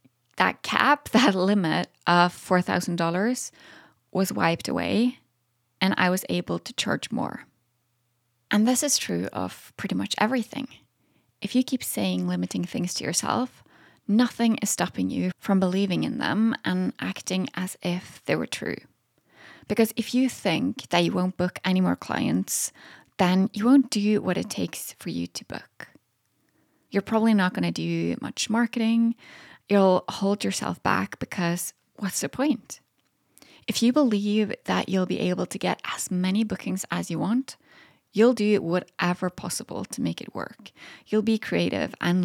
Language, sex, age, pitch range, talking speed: English, female, 20-39, 165-220 Hz, 160 wpm